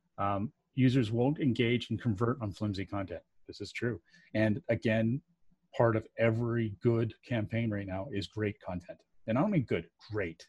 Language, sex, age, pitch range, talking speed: English, male, 30-49, 105-125 Hz, 170 wpm